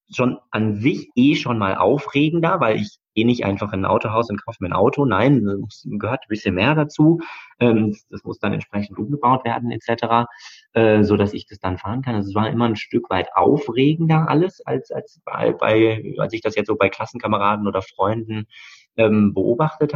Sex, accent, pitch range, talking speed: male, German, 100-120 Hz, 185 wpm